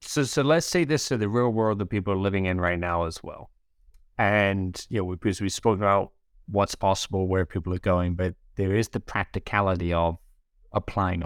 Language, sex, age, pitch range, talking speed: English, male, 30-49, 90-115 Hz, 215 wpm